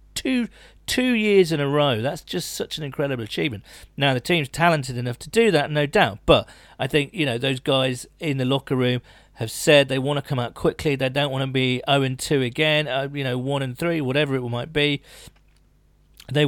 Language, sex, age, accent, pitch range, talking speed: English, male, 40-59, British, 120-145 Hz, 220 wpm